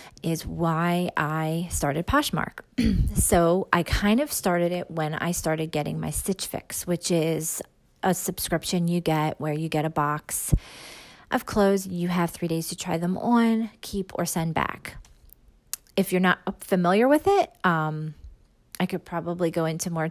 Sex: female